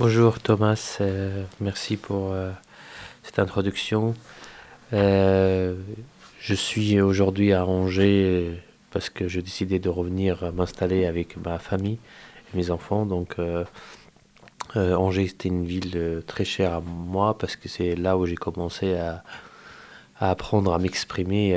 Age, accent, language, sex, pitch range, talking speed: 20-39, French, French, male, 90-95 Hz, 140 wpm